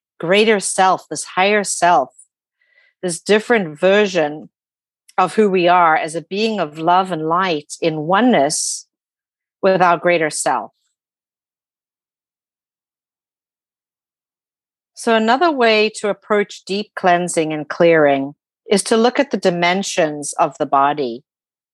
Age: 50-69